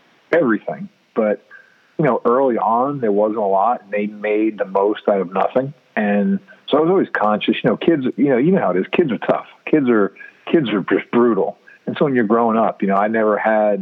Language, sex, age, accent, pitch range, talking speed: English, male, 40-59, American, 100-110 Hz, 235 wpm